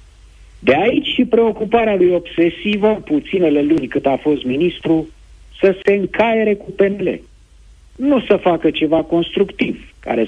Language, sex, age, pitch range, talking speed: Romanian, male, 50-69, 125-190 Hz, 135 wpm